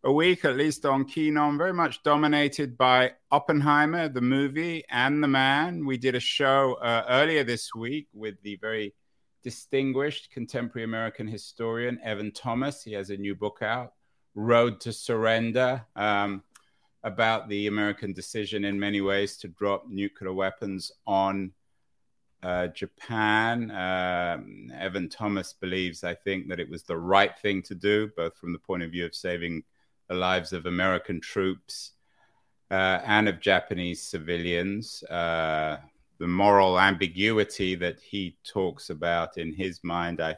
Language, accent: English, British